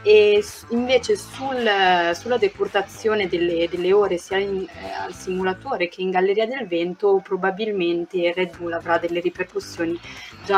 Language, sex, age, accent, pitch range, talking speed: Italian, female, 30-49, native, 170-200 Hz, 140 wpm